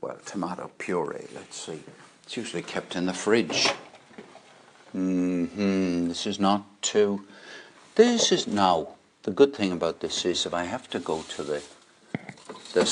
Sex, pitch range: male, 110-165 Hz